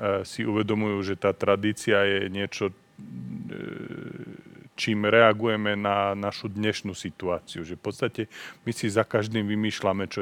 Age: 40-59